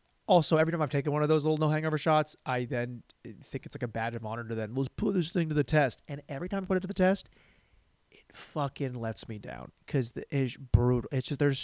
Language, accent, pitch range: English, American, 120-165 Hz